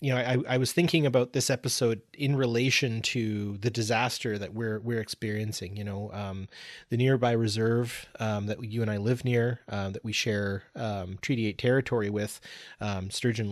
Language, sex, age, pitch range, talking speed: English, male, 30-49, 105-125 Hz, 190 wpm